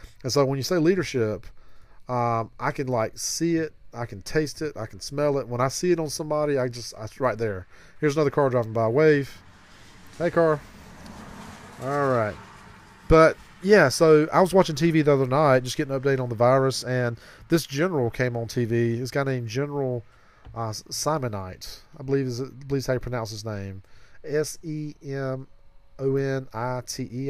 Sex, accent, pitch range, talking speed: male, American, 110-140 Hz, 185 wpm